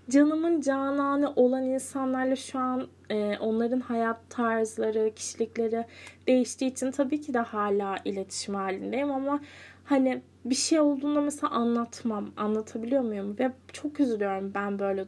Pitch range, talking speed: 210-265 Hz, 130 wpm